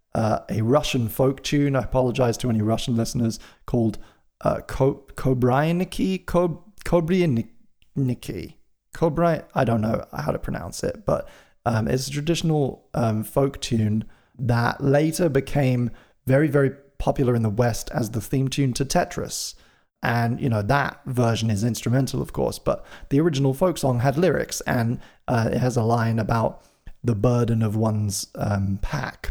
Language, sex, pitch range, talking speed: English, male, 110-140 Hz, 155 wpm